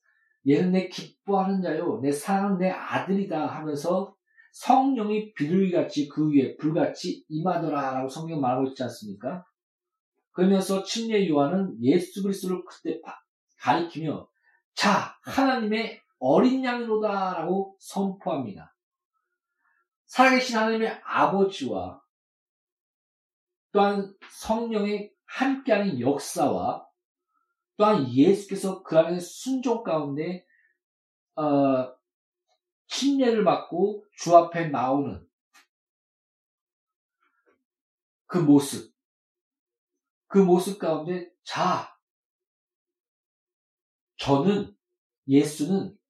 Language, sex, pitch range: Korean, male, 160-270 Hz